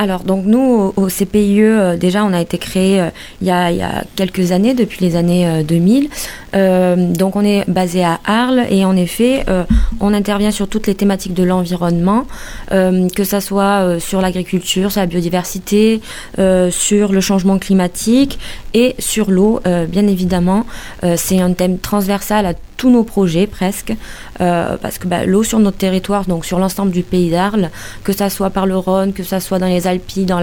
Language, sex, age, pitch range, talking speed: French, female, 20-39, 180-205 Hz, 195 wpm